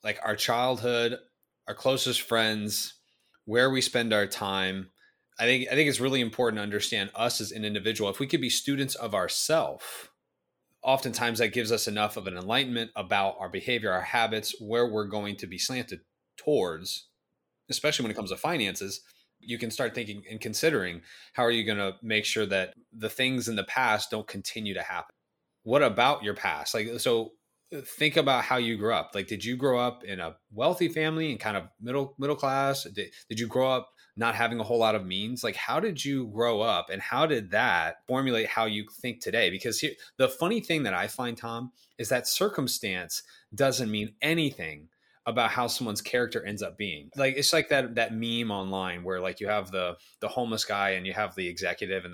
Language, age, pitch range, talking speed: English, 20-39, 105-130 Hz, 205 wpm